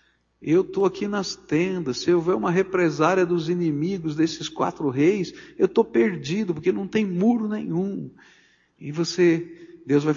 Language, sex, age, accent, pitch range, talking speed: Portuguese, male, 60-79, Brazilian, 130-205 Hz, 155 wpm